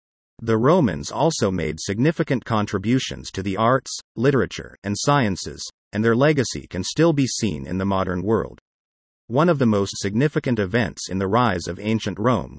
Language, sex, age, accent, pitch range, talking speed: English, male, 40-59, American, 95-125 Hz, 165 wpm